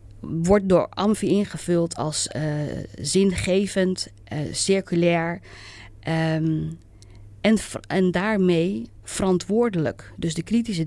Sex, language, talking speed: female, Dutch, 90 wpm